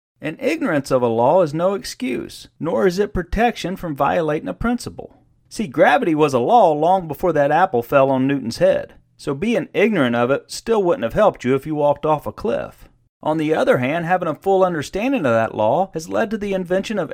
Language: English